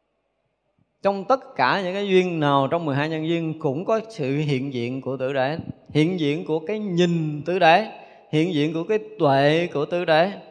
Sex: male